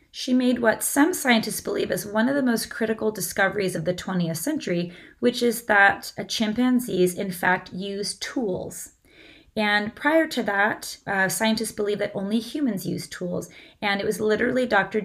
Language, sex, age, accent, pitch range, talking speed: English, female, 30-49, American, 185-240 Hz, 170 wpm